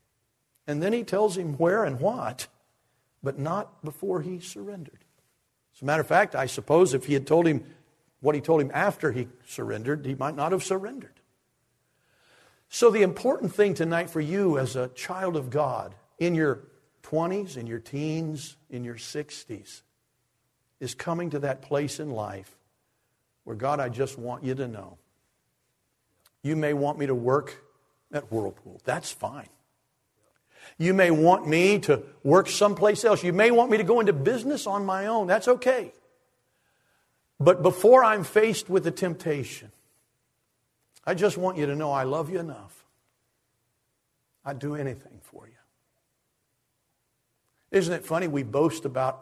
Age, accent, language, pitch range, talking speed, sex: 50-69, American, English, 130-180 Hz, 160 wpm, male